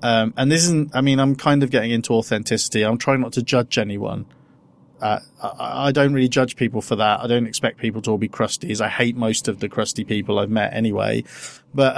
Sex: male